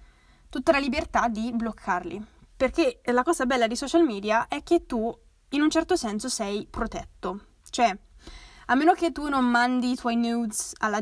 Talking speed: 175 wpm